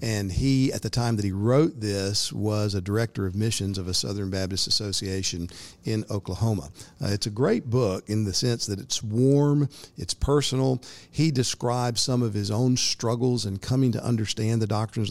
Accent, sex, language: American, male, English